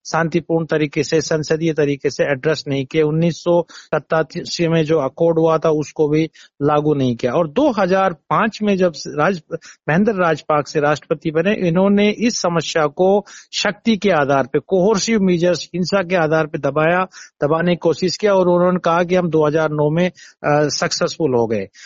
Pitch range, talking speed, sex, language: 155-195 Hz, 160 wpm, male, Hindi